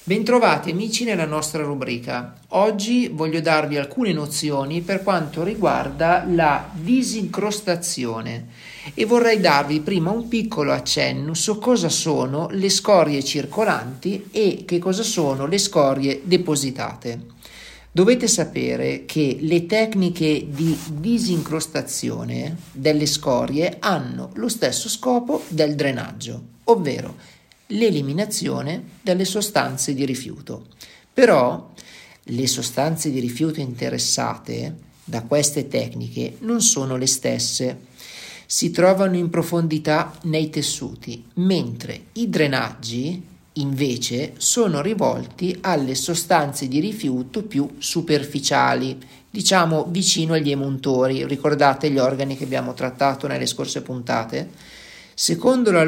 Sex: male